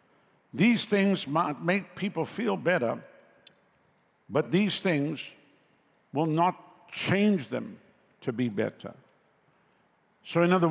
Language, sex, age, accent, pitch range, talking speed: English, male, 60-79, American, 150-185 Hz, 110 wpm